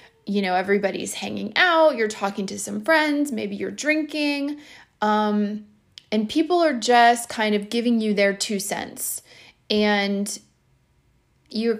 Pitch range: 210-270 Hz